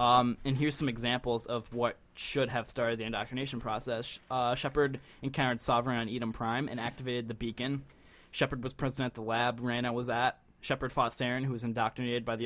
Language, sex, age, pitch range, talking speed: English, male, 10-29, 115-130 Hz, 195 wpm